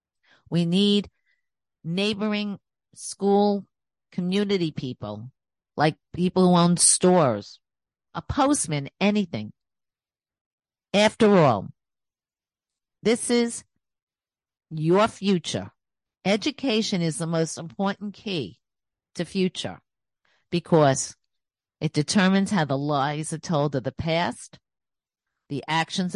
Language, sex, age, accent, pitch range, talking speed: English, female, 50-69, American, 150-200 Hz, 95 wpm